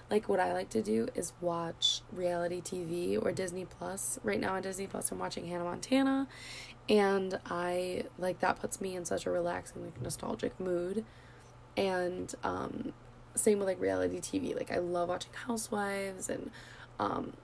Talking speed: 170 wpm